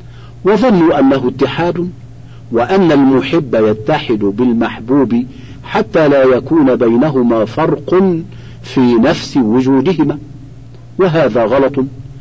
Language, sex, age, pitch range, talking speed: Arabic, male, 50-69, 120-155 Hz, 85 wpm